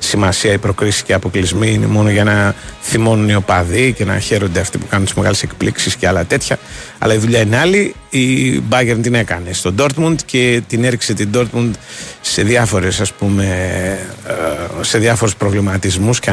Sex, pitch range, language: male, 100-125 Hz, Greek